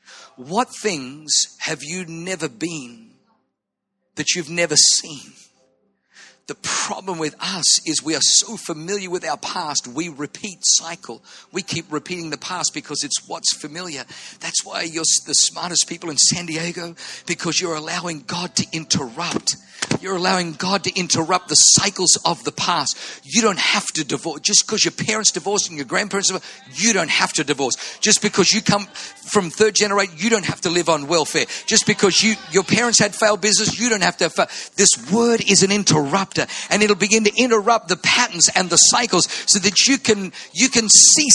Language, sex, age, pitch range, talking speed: English, male, 50-69, 165-215 Hz, 185 wpm